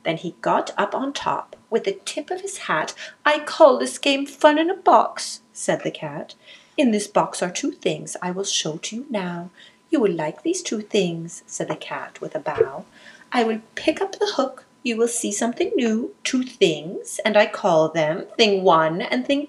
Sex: female